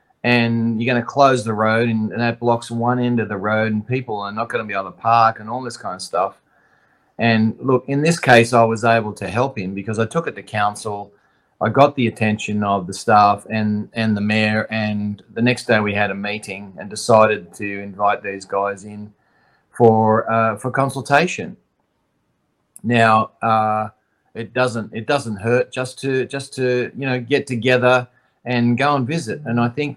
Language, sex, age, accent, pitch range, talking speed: English, male, 30-49, Australian, 105-125 Hz, 200 wpm